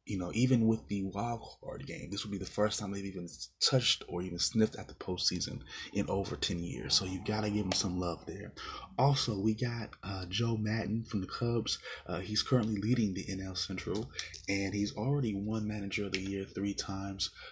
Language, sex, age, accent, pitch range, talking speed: English, male, 20-39, American, 95-115 Hz, 210 wpm